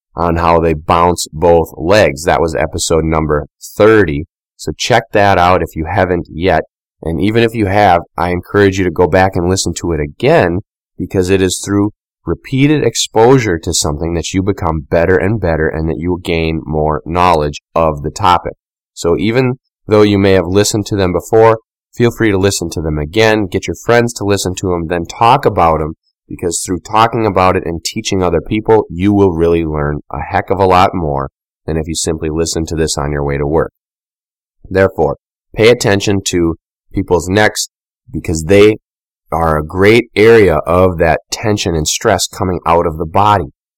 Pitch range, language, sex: 80-100 Hz, English, male